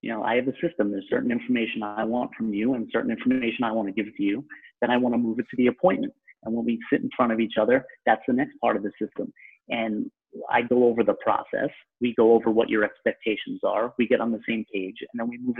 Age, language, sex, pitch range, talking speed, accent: 30-49, English, male, 115-140 Hz, 270 wpm, American